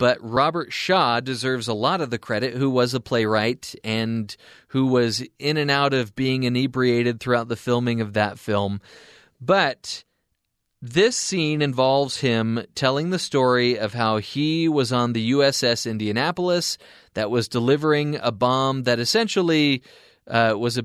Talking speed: 155 wpm